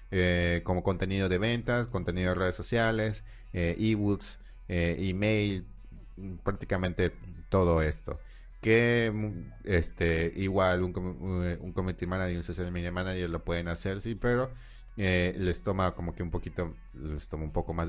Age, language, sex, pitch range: 30-49, Spanish, male, 85-100 Hz